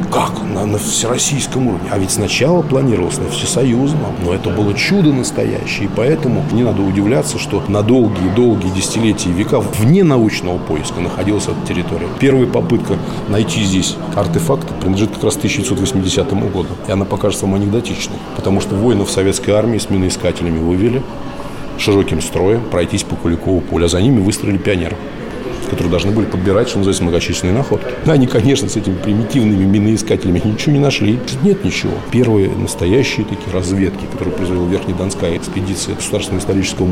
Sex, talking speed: male, 155 wpm